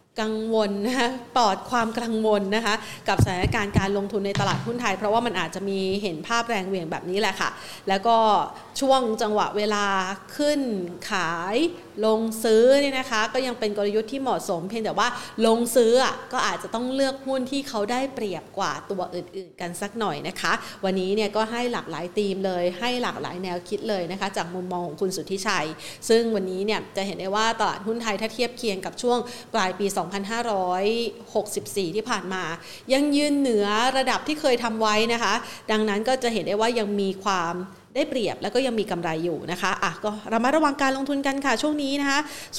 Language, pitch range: Thai, 200-260 Hz